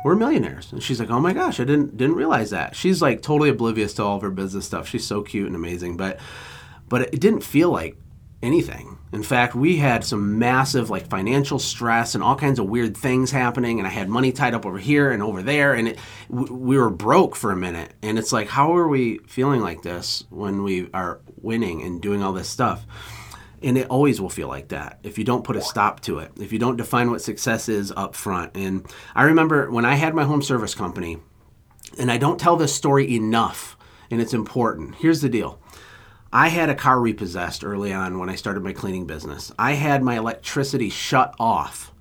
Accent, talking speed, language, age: American, 215 wpm, English, 30-49